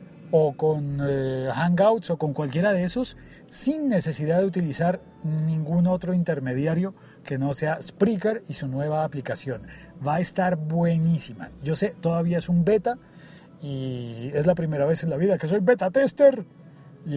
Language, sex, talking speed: Spanish, male, 165 wpm